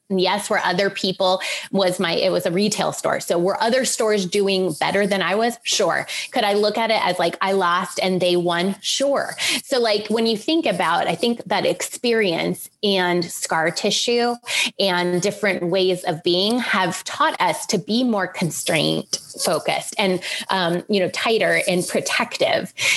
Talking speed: 175 wpm